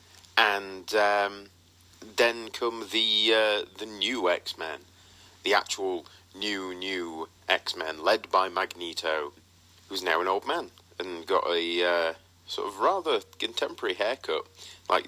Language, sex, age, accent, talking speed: English, male, 30-49, British, 125 wpm